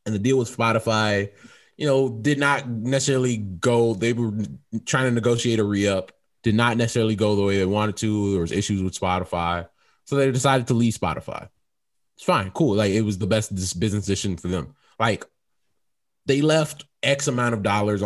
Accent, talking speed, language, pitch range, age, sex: American, 190 wpm, English, 100-125 Hz, 20-39, male